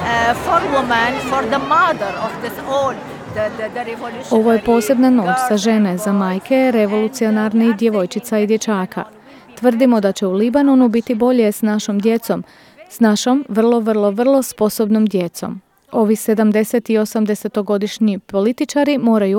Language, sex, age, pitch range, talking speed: Croatian, female, 30-49, 205-245 Hz, 110 wpm